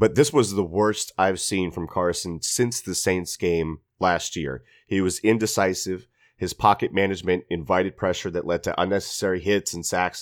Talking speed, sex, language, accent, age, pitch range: 175 wpm, male, English, American, 30-49, 90-115 Hz